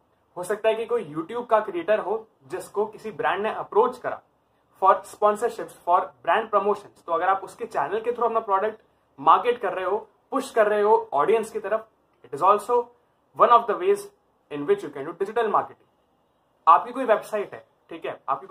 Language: Hindi